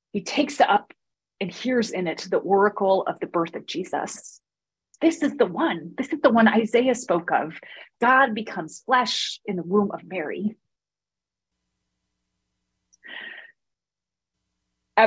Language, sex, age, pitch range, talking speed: English, female, 30-49, 185-235 Hz, 140 wpm